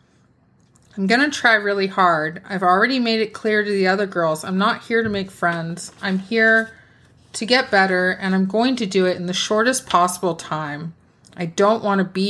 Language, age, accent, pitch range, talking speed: English, 30-49, American, 175-215 Hz, 205 wpm